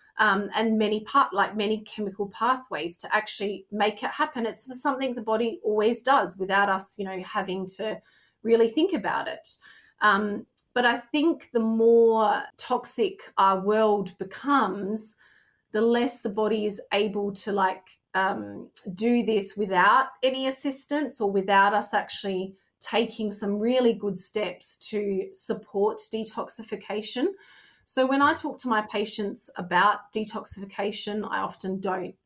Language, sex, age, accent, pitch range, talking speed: English, female, 30-49, Australian, 195-240 Hz, 145 wpm